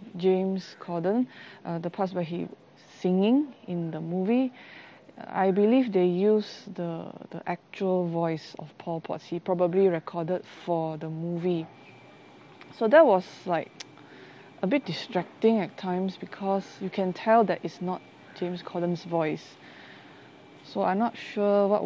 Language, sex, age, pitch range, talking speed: English, female, 20-39, 170-195 Hz, 145 wpm